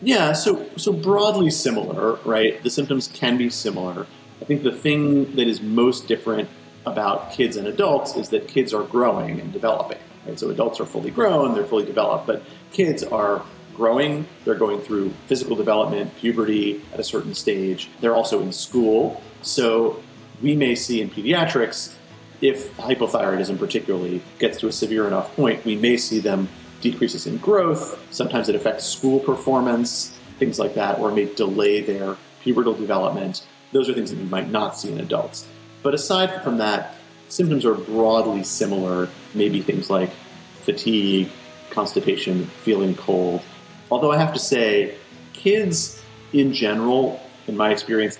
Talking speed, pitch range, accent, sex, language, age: 160 wpm, 110-140 Hz, American, male, English, 40-59